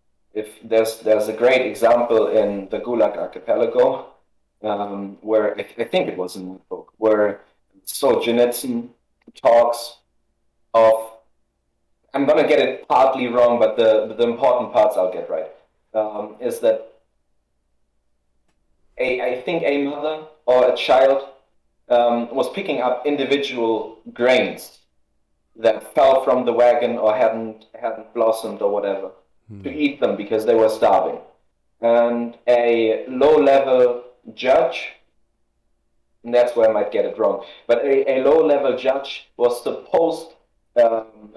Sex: male